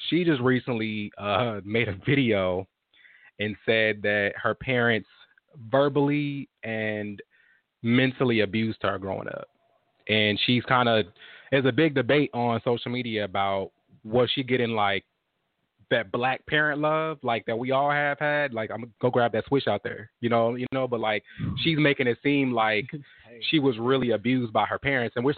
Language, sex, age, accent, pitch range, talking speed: English, male, 20-39, American, 110-130 Hz, 175 wpm